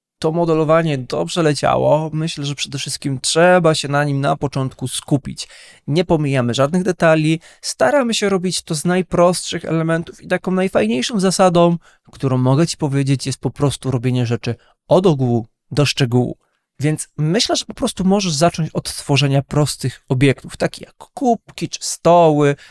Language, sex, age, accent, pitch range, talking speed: Polish, male, 20-39, native, 135-175 Hz, 155 wpm